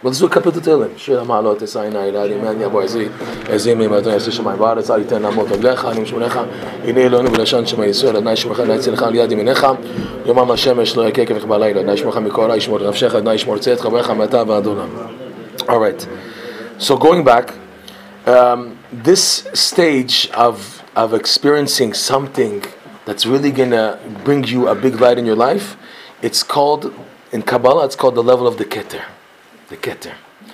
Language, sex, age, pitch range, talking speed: English, male, 30-49, 125-155 Hz, 70 wpm